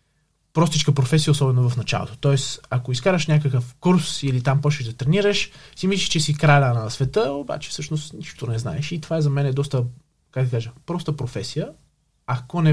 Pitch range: 125-155 Hz